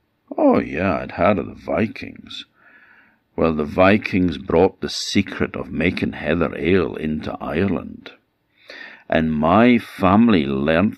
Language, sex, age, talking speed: English, male, 60-79, 125 wpm